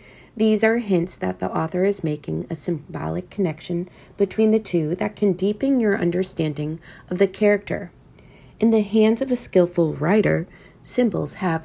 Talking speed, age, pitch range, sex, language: 160 wpm, 40-59, 160-205 Hz, female, English